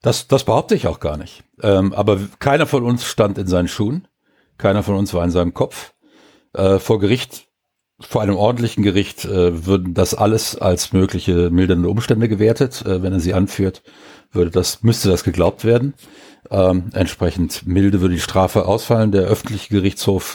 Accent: German